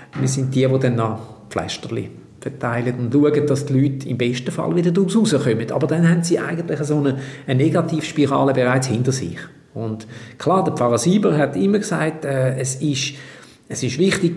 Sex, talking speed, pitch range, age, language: male, 190 wpm, 125-160 Hz, 50-69, German